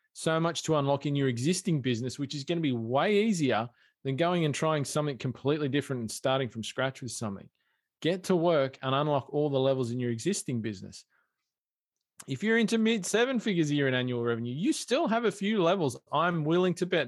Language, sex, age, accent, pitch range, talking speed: English, male, 20-39, Australian, 125-155 Hz, 215 wpm